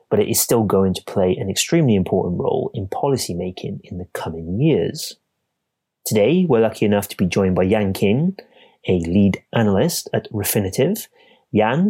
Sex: male